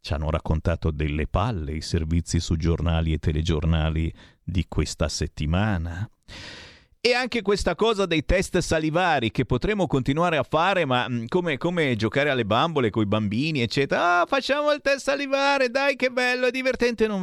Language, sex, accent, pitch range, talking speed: Italian, male, native, 105-165 Hz, 160 wpm